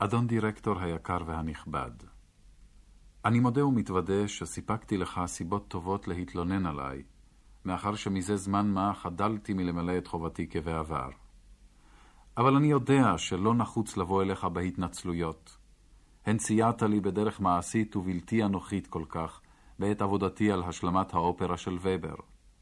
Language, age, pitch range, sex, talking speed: Hebrew, 40-59, 90-105 Hz, male, 120 wpm